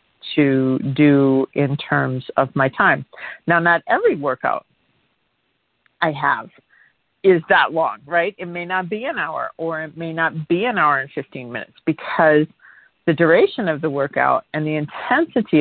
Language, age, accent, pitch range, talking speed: English, 50-69, American, 135-170 Hz, 160 wpm